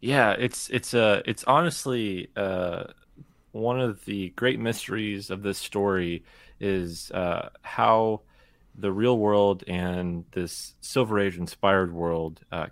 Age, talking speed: 30-49, 135 wpm